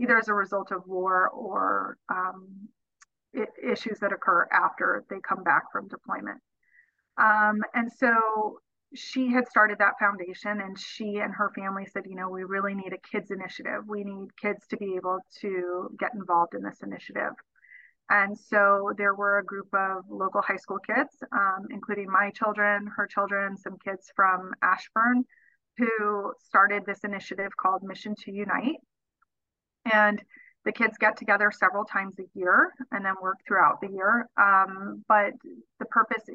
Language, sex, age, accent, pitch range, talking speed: English, female, 30-49, American, 195-225 Hz, 165 wpm